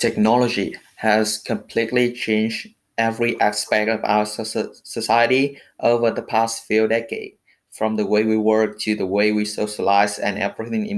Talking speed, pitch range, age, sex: 150 wpm, 110-130 Hz, 20-39, male